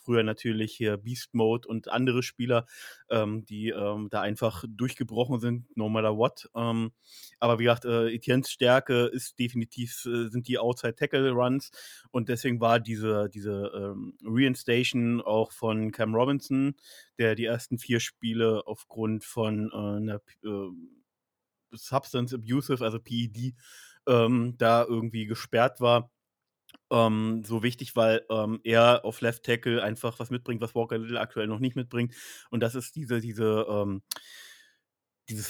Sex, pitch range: male, 110-125 Hz